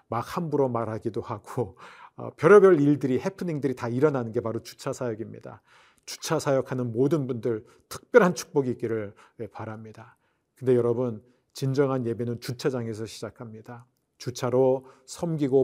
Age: 40-59